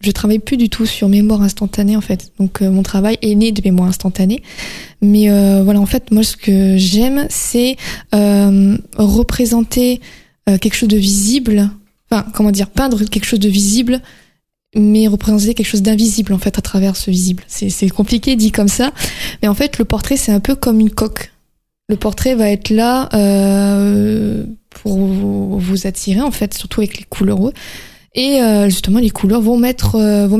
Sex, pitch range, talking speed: female, 195-225 Hz, 180 wpm